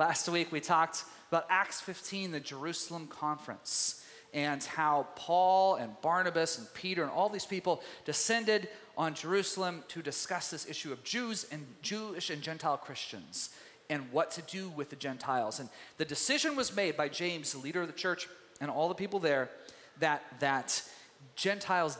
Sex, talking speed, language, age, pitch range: male, 170 wpm, English, 30-49, 145-185 Hz